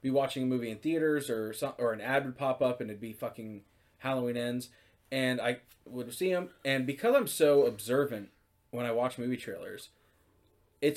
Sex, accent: male, American